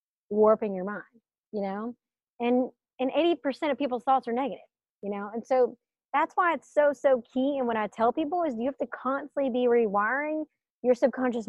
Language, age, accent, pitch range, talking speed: English, 30-49, American, 215-270 Hz, 200 wpm